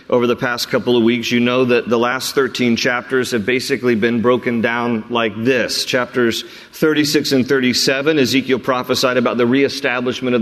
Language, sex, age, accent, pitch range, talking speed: English, male, 40-59, American, 120-140 Hz, 175 wpm